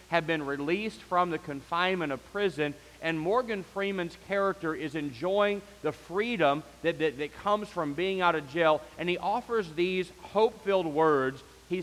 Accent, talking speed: American, 160 wpm